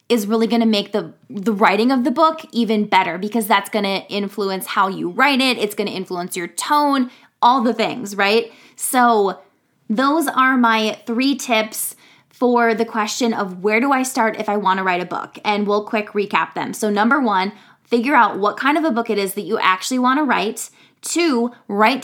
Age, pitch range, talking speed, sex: 20-39, 205-260 Hz, 210 wpm, female